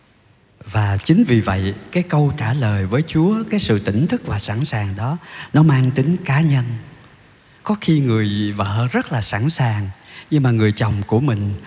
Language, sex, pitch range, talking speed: Vietnamese, male, 100-135 Hz, 190 wpm